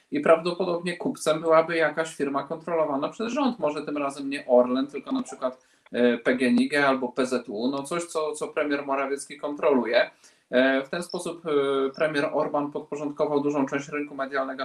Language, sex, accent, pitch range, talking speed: Polish, male, native, 135-155 Hz, 150 wpm